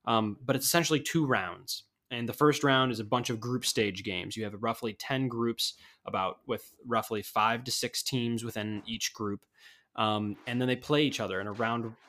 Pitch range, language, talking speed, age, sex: 105-125 Hz, English, 210 wpm, 10-29, male